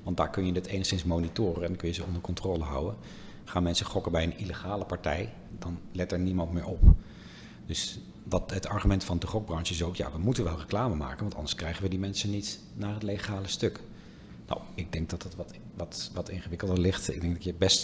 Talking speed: 230 wpm